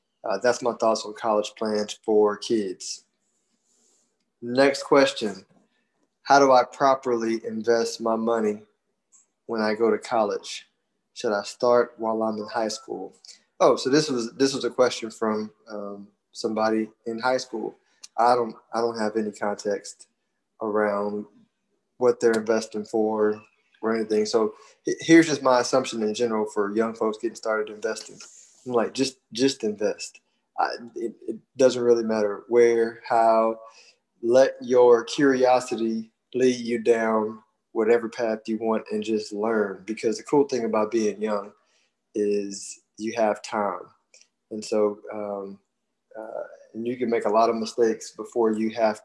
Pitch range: 105-120 Hz